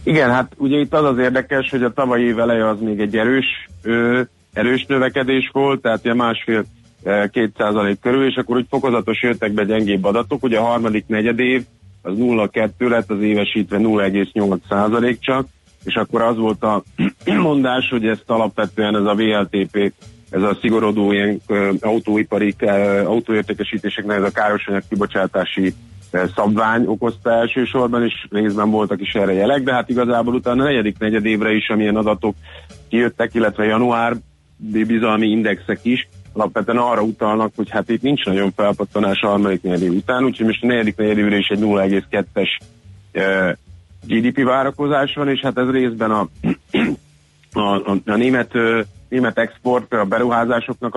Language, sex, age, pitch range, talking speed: Hungarian, male, 30-49, 100-120 Hz, 145 wpm